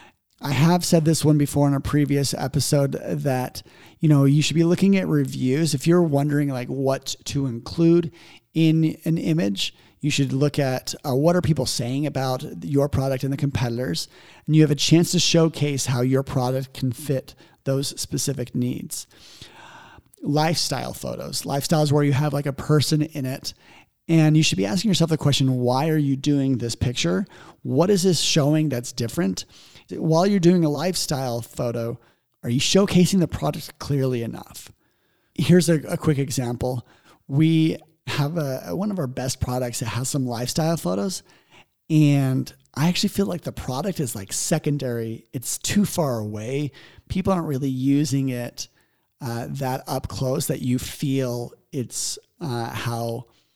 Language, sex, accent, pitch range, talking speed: English, male, American, 130-160 Hz, 165 wpm